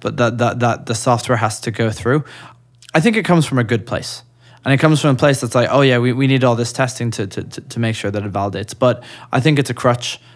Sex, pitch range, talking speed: male, 110-125 Hz, 280 wpm